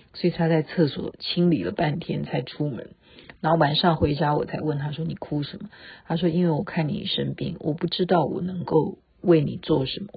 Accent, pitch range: native, 165-250 Hz